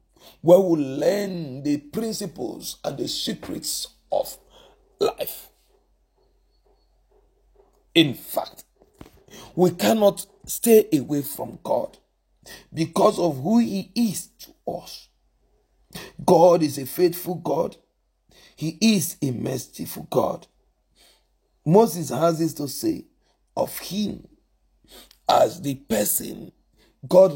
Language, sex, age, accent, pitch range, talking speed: English, male, 50-69, Nigerian, 150-210 Hz, 100 wpm